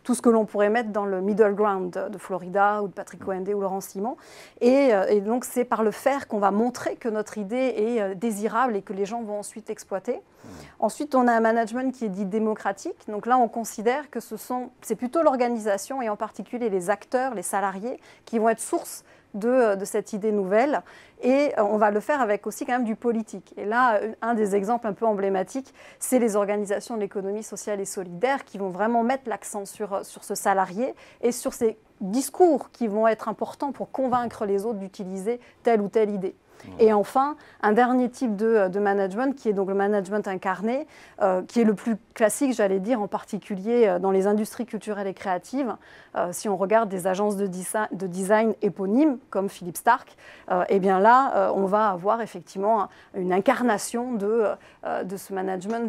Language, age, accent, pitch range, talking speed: French, 30-49, French, 200-235 Hz, 205 wpm